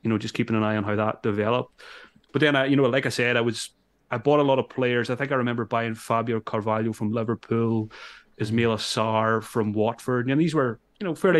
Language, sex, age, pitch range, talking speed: English, male, 30-49, 110-125 Hz, 235 wpm